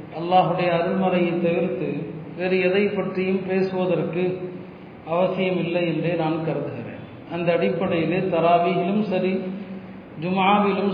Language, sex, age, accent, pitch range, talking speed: Tamil, male, 40-59, native, 175-205 Hz, 95 wpm